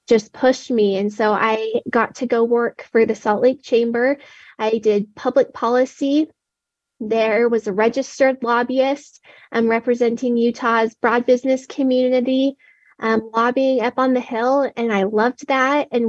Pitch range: 215-250 Hz